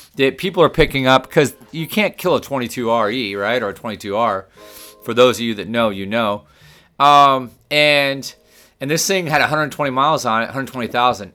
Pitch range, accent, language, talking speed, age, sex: 115-145 Hz, American, English, 180 wpm, 30-49, male